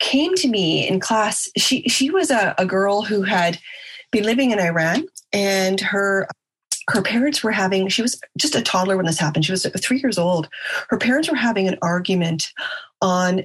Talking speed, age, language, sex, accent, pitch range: 190 wpm, 30-49, English, female, American, 170-210 Hz